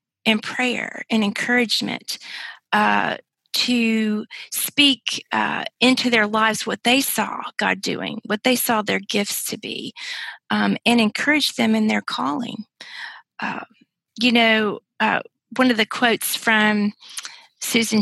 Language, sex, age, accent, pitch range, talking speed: English, female, 40-59, American, 205-235 Hz, 135 wpm